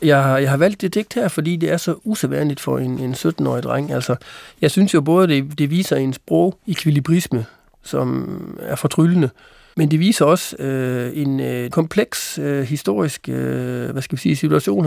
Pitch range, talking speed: 135-165 Hz, 185 wpm